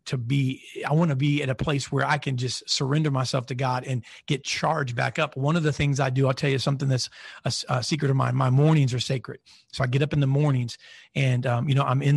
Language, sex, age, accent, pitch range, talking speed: English, male, 40-59, American, 130-150 Hz, 270 wpm